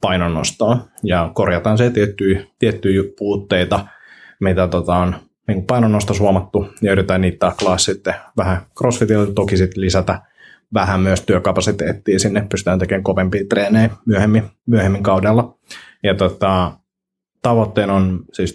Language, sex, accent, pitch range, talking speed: Finnish, male, native, 95-110 Hz, 120 wpm